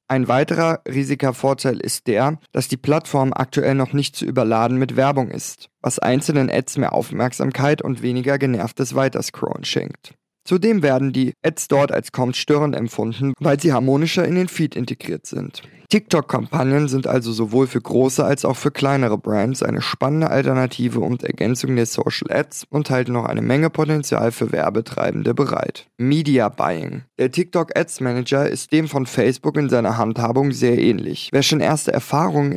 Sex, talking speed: male, 160 wpm